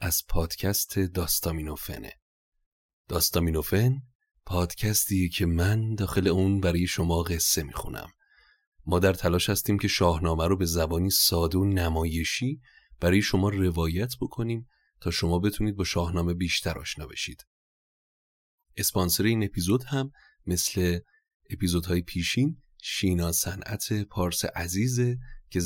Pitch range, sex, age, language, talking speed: 85-105 Hz, male, 30-49, Persian, 115 wpm